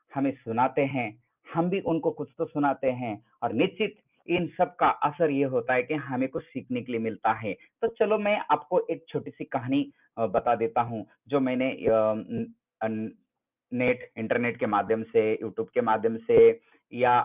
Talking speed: 175 wpm